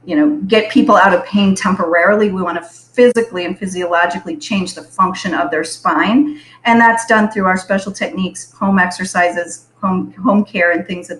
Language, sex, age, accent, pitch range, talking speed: English, female, 40-59, American, 175-215 Hz, 190 wpm